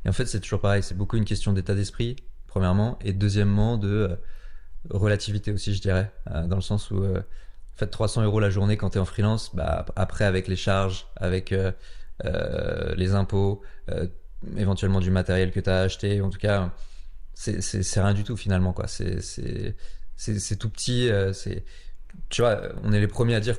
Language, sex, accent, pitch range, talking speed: French, male, French, 95-105 Hz, 210 wpm